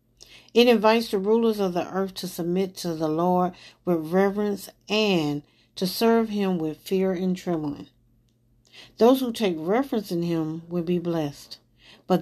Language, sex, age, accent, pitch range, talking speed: English, female, 50-69, American, 145-205 Hz, 155 wpm